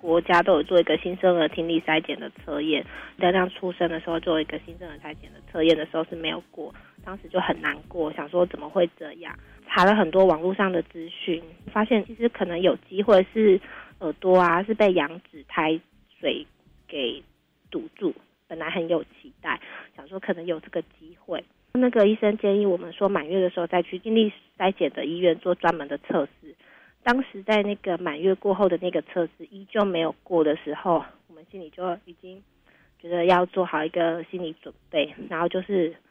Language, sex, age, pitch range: Chinese, female, 30-49, 165-195 Hz